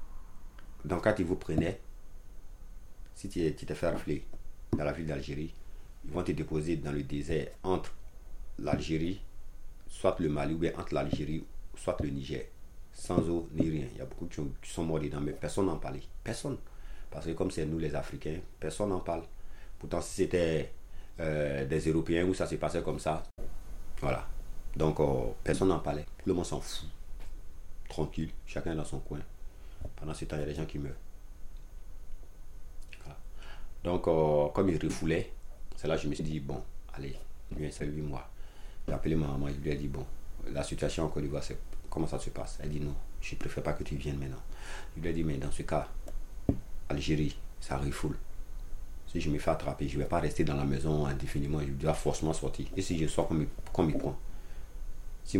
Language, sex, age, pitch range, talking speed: French, male, 50-69, 75-85 Hz, 200 wpm